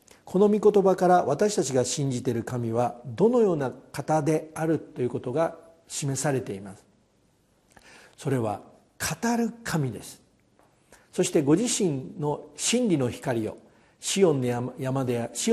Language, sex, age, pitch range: Japanese, male, 50-69, 125-195 Hz